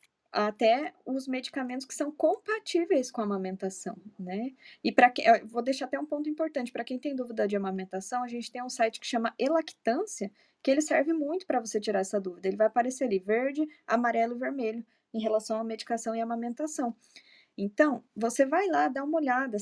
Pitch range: 215-270 Hz